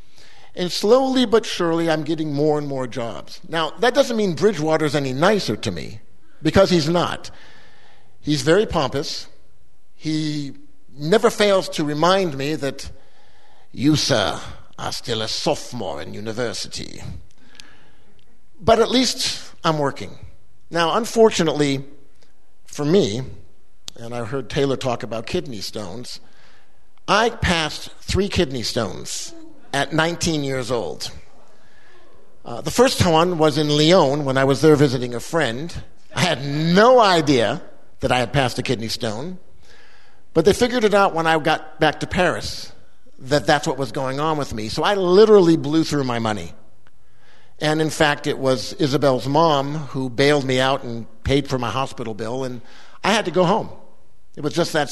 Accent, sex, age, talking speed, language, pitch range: American, male, 50-69, 155 wpm, English, 130-170 Hz